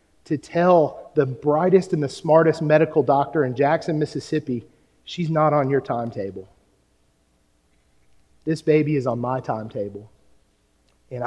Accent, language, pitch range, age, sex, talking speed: American, English, 105-155 Hz, 40-59, male, 130 wpm